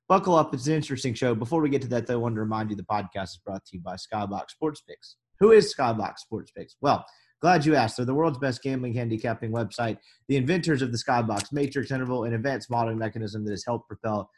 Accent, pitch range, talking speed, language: American, 115-150 Hz, 240 wpm, English